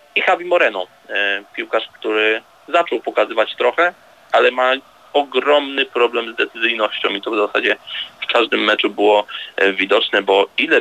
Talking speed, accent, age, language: 140 wpm, native, 20-39, Polish